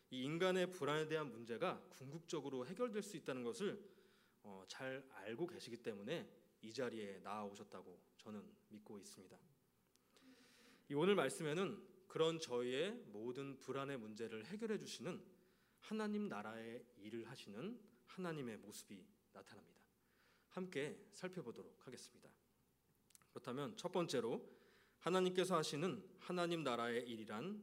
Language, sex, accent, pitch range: Korean, male, native, 150-205 Hz